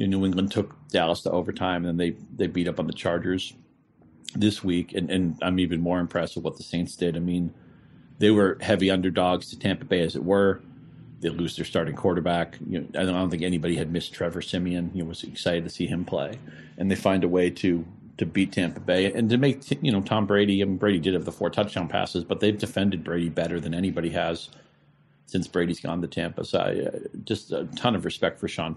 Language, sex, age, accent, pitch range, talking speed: English, male, 40-59, American, 85-95 Hz, 230 wpm